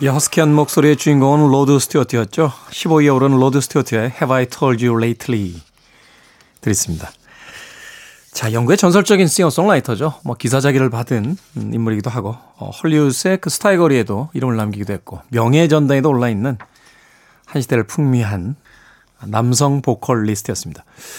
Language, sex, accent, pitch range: Korean, male, native, 125-170 Hz